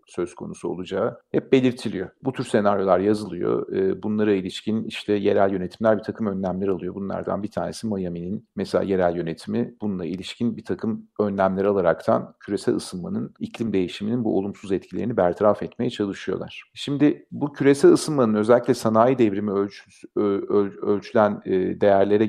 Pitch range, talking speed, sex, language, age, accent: 95-115 Hz, 135 wpm, male, Turkish, 40-59, native